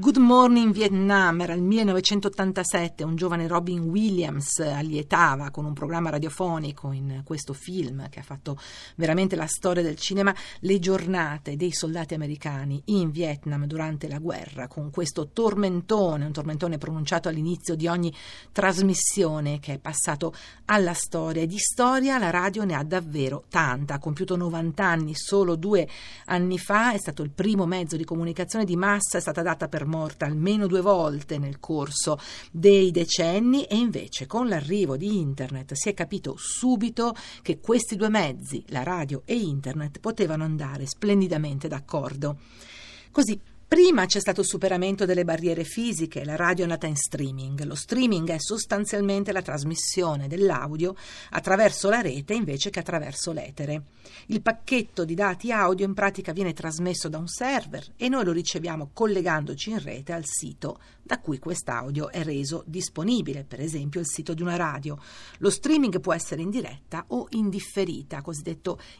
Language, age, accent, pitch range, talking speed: Italian, 50-69, native, 155-195 Hz, 160 wpm